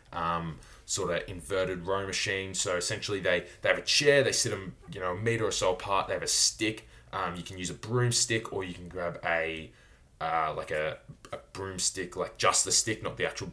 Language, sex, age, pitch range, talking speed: English, male, 20-39, 90-115 Hz, 220 wpm